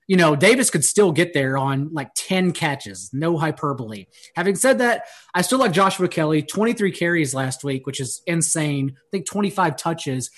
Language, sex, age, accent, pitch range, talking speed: English, male, 30-49, American, 150-195 Hz, 185 wpm